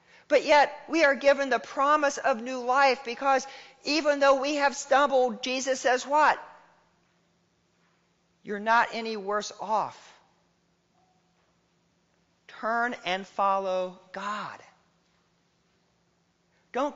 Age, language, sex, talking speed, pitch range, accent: 40-59, English, male, 105 wpm, 190-275 Hz, American